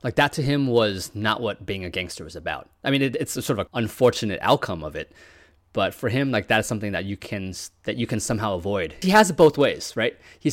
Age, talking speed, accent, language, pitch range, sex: 20-39, 260 wpm, American, English, 100-155 Hz, male